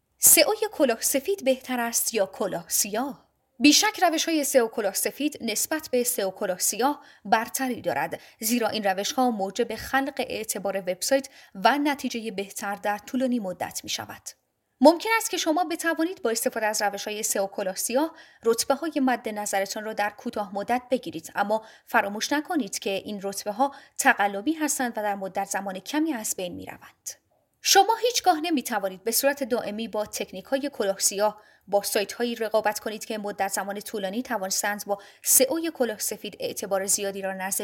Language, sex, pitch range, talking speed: Persian, female, 200-275 Hz, 155 wpm